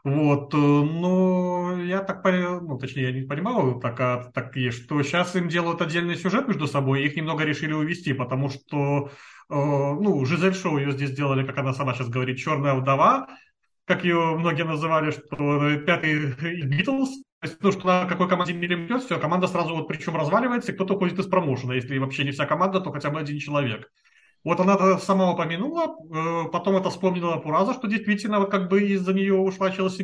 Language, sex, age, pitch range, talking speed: Russian, male, 30-49, 145-190 Hz, 190 wpm